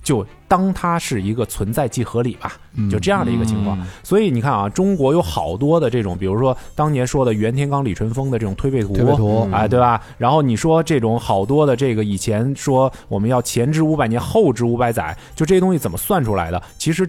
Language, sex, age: Chinese, male, 20-39